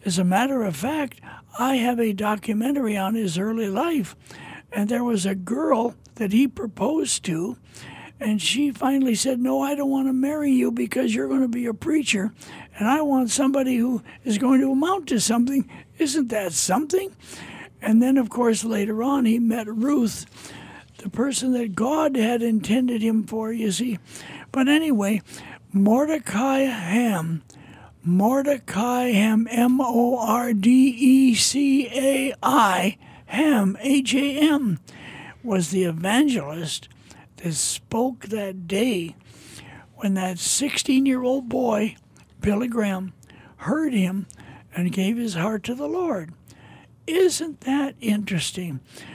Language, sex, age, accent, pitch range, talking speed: English, male, 60-79, American, 205-270 Hz, 130 wpm